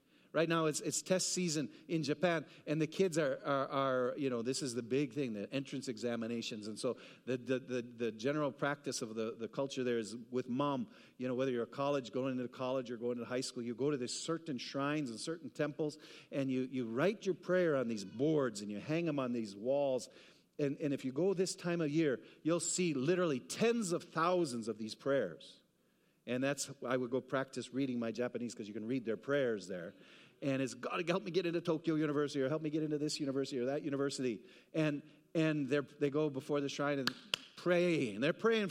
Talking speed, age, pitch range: 225 wpm, 50-69, 125-165 Hz